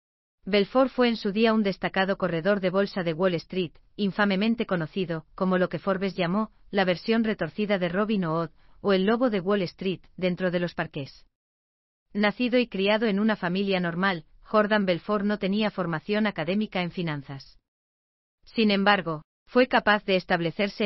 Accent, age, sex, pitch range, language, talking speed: Spanish, 40-59, female, 165-210 Hz, German, 165 wpm